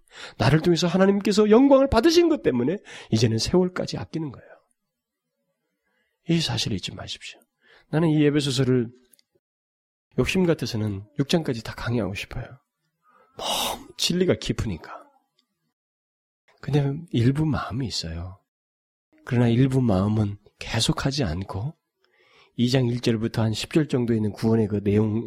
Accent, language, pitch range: native, Korean, 105-155 Hz